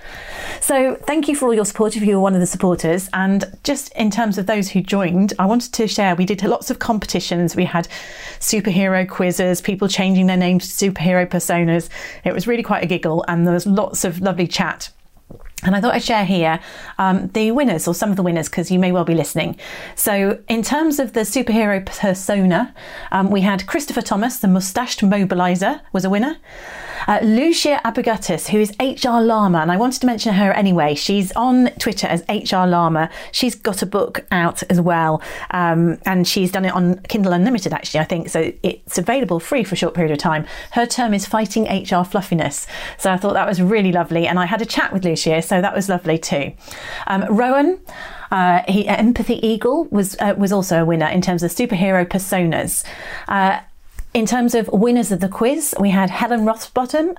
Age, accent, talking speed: 40-59, British, 205 wpm